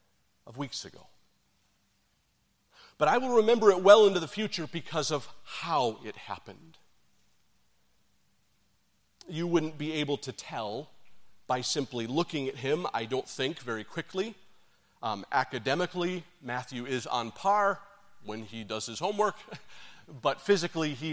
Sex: male